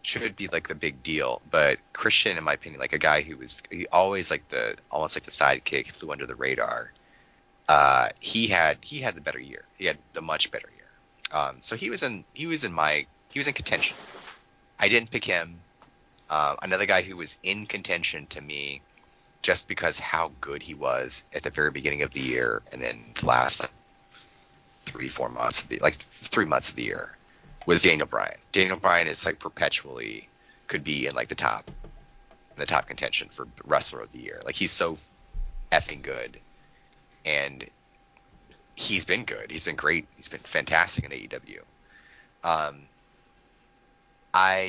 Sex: male